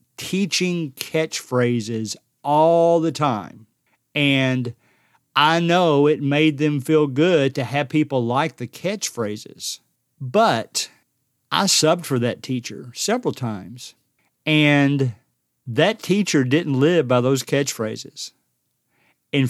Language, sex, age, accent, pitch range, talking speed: English, male, 50-69, American, 130-165 Hz, 110 wpm